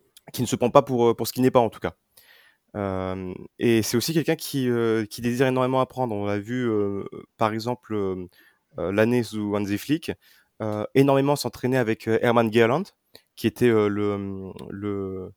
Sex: male